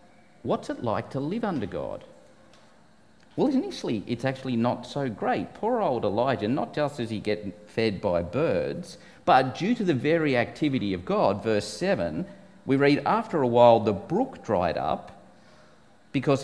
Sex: male